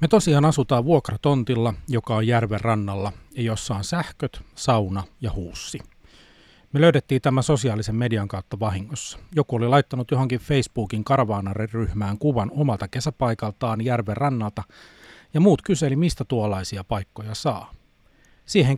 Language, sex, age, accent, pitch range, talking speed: Finnish, male, 40-59, native, 105-140 Hz, 130 wpm